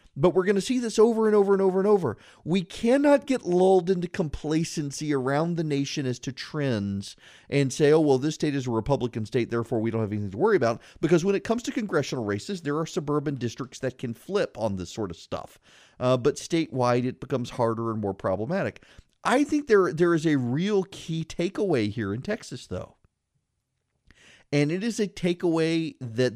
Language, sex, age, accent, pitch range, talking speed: English, male, 40-59, American, 115-165 Hz, 205 wpm